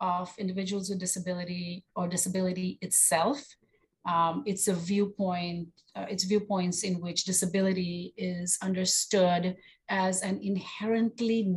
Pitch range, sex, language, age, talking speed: 170-200 Hz, female, English, 40-59, 115 wpm